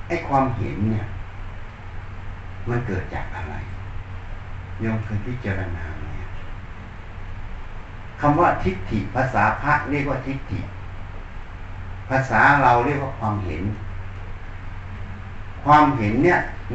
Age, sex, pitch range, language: 60-79, male, 95-110 Hz, Thai